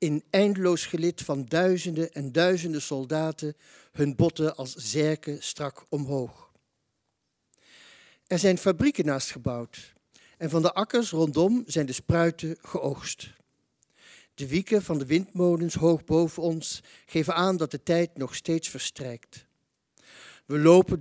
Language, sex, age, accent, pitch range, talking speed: Dutch, male, 60-79, Dutch, 140-170 Hz, 130 wpm